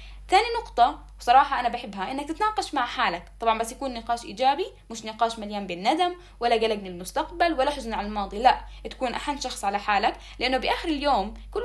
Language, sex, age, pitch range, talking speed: Arabic, female, 10-29, 220-290 Hz, 185 wpm